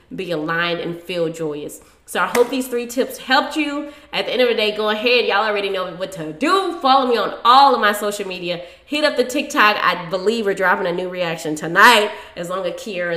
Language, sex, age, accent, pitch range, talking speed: English, female, 20-39, American, 175-225 Hz, 235 wpm